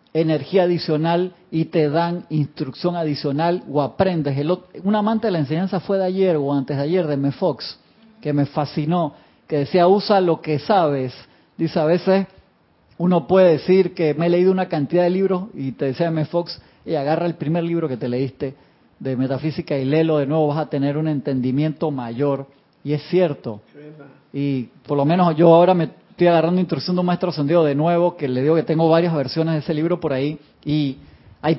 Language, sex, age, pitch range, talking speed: Spanish, male, 40-59, 145-175 Hz, 200 wpm